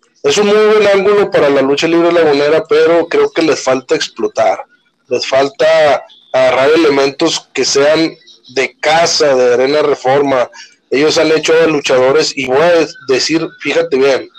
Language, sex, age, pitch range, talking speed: Spanish, male, 30-49, 145-225 Hz, 165 wpm